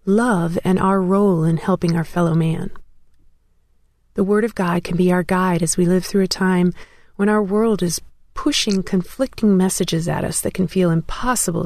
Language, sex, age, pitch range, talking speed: English, female, 40-59, 175-210 Hz, 185 wpm